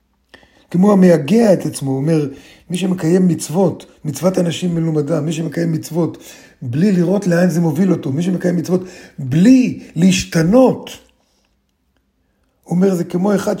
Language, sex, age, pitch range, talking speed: Hebrew, male, 50-69, 135-185 Hz, 135 wpm